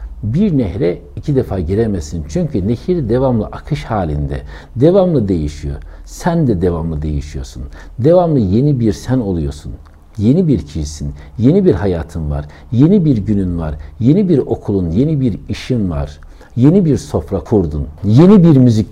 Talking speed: 145 wpm